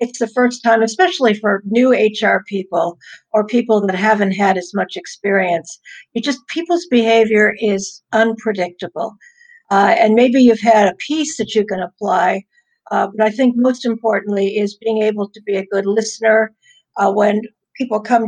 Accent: American